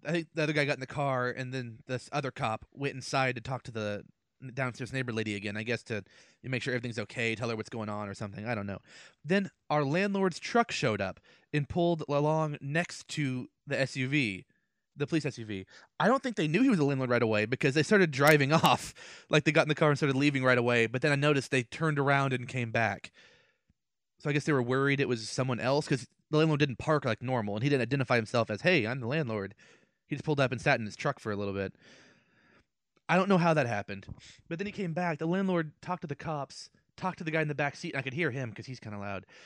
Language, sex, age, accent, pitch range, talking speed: English, male, 20-39, American, 120-155 Hz, 255 wpm